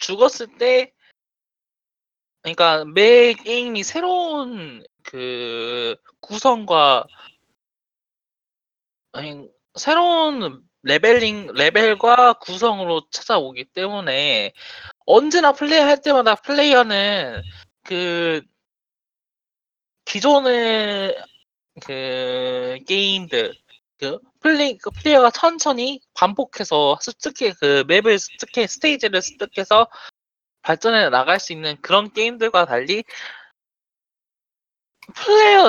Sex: male